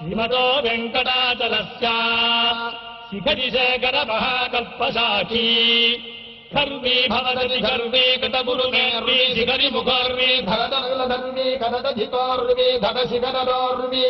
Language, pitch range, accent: Telugu, 235-255 Hz, native